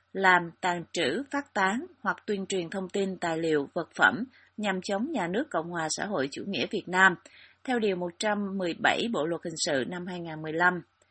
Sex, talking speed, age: female, 190 wpm, 30-49